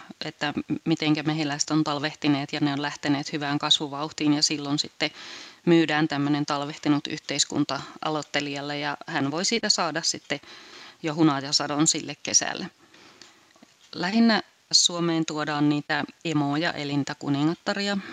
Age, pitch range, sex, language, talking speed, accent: 30-49, 145-165 Hz, female, Finnish, 115 wpm, native